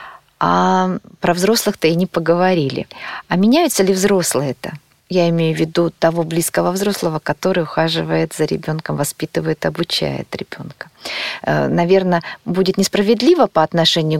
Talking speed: 125 wpm